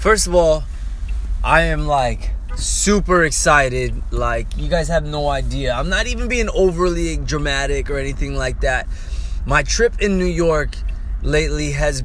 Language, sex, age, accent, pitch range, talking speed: English, male, 20-39, American, 120-180 Hz, 155 wpm